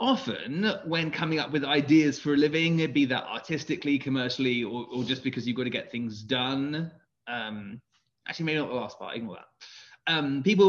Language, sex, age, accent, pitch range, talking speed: English, male, 20-39, British, 135-195 Hz, 190 wpm